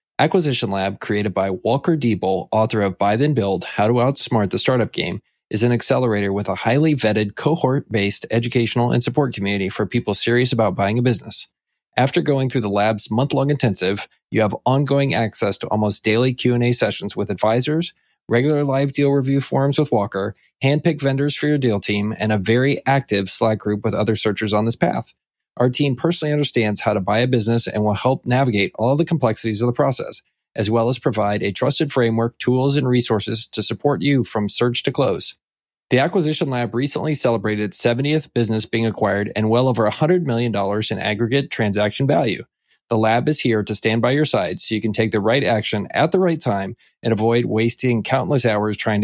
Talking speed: 195 wpm